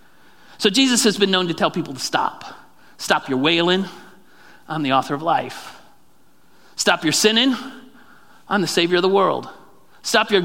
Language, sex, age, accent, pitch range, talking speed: English, male, 40-59, American, 175-215 Hz, 165 wpm